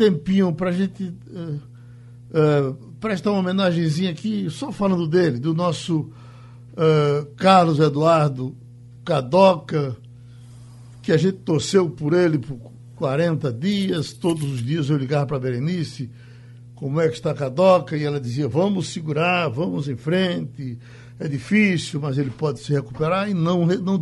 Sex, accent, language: male, Brazilian, Portuguese